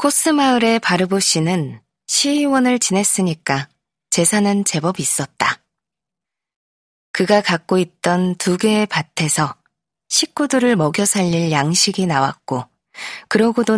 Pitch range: 155-215 Hz